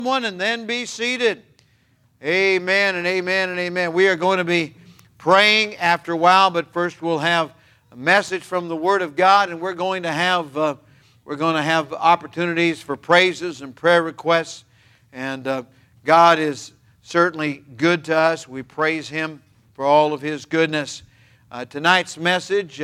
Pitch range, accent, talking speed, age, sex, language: 135-175 Hz, American, 170 wpm, 50-69, male, English